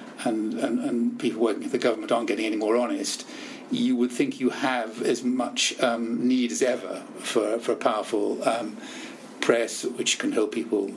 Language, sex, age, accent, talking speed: English, male, 50-69, British, 185 wpm